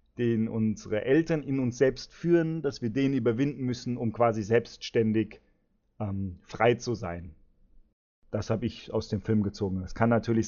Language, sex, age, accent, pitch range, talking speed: German, male, 30-49, German, 110-130 Hz, 165 wpm